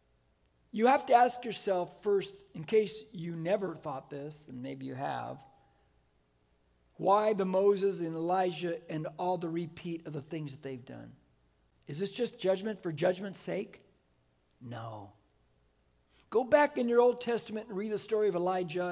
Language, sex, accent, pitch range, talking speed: English, male, American, 165-220 Hz, 160 wpm